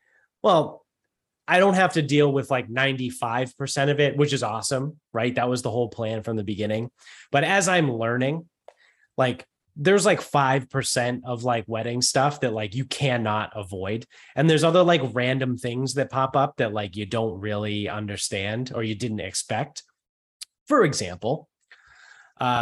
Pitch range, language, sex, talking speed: 105-135 Hz, English, male, 165 wpm